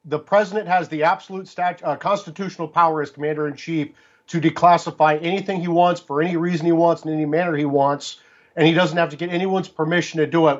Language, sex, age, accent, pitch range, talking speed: English, male, 50-69, American, 150-175 Hz, 215 wpm